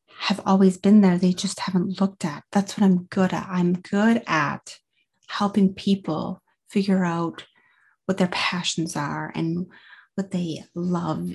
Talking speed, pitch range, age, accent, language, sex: 155 wpm, 185-210 Hz, 30-49, American, English, female